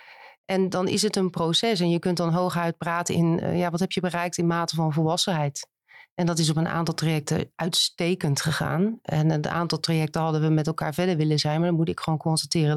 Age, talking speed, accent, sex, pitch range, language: 40-59, 225 wpm, Dutch, female, 155-175 Hz, Dutch